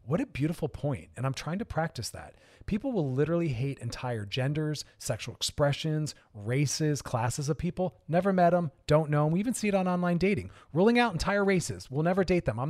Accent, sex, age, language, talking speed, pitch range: American, male, 30-49, English, 210 wpm, 130-175 Hz